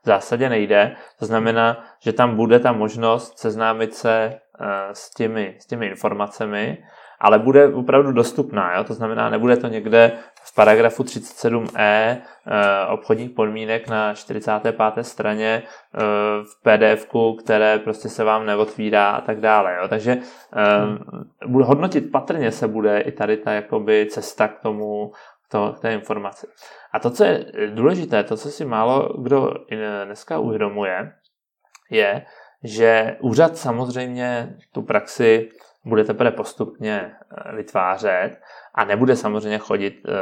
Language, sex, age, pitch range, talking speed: Czech, male, 20-39, 105-115 Hz, 135 wpm